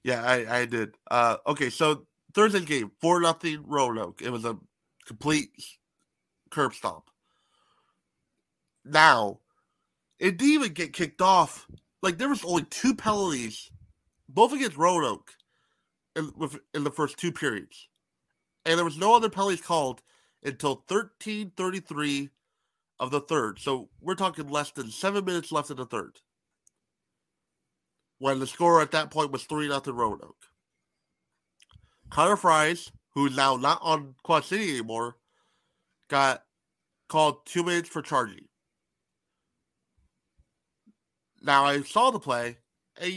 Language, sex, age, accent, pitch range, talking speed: English, male, 30-49, American, 140-195 Hz, 135 wpm